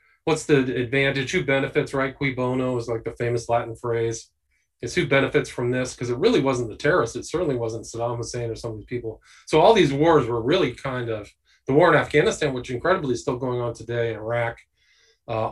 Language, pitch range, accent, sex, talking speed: English, 120-150 Hz, American, male, 220 wpm